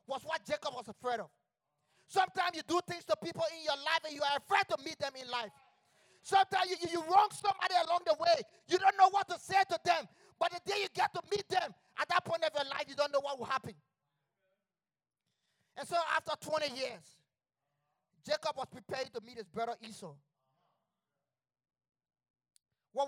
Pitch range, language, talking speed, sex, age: 220-355 Hz, English, 195 wpm, male, 30-49